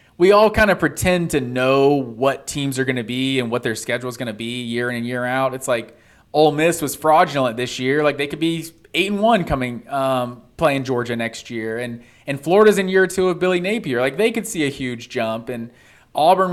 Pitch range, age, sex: 125-160 Hz, 20-39, male